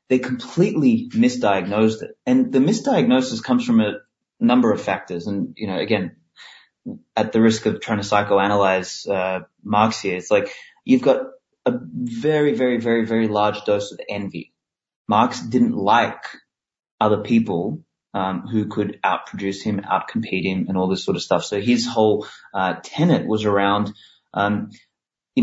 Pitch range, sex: 105-160 Hz, male